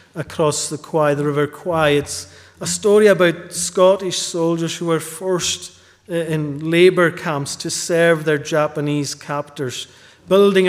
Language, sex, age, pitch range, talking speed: English, male, 40-59, 145-175 Hz, 135 wpm